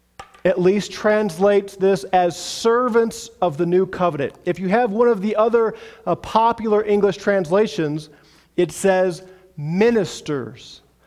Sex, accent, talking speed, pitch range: male, American, 130 wpm, 175-215 Hz